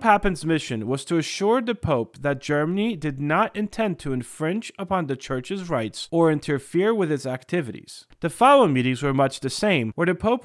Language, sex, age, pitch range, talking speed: English, male, 30-49, 130-195 Hz, 190 wpm